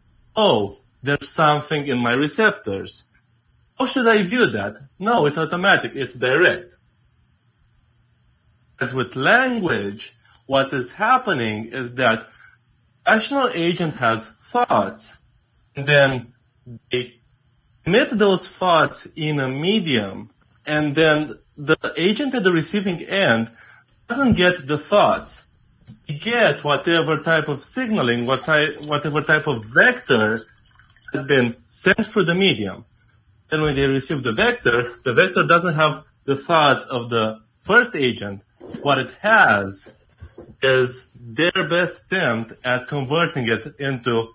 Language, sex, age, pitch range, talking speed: English, male, 30-49, 120-175 Hz, 125 wpm